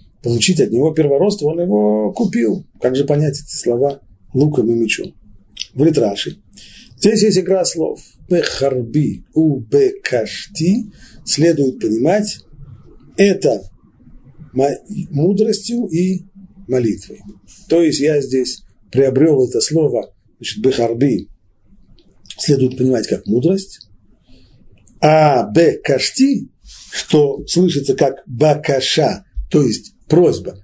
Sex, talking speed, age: male, 100 wpm, 50-69